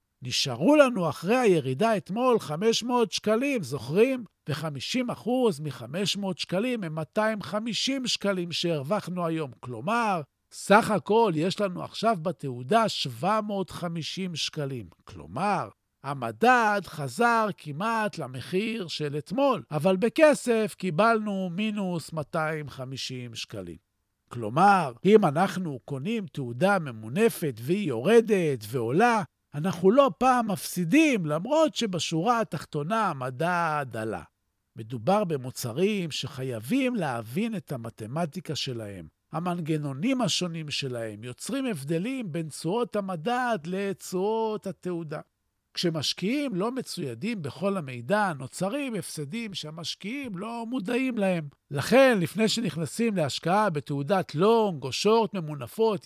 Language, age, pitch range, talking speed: Hebrew, 50-69, 145-220 Hz, 100 wpm